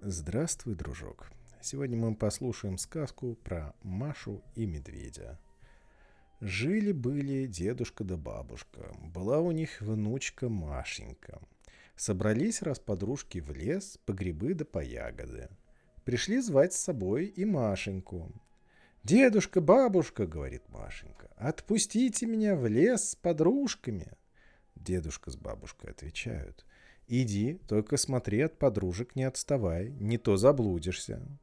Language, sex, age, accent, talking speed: Russian, male, 40-59, native, 115 wpm